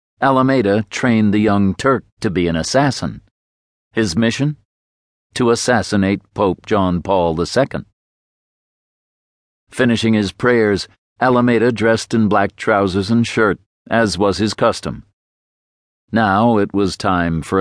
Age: 60-79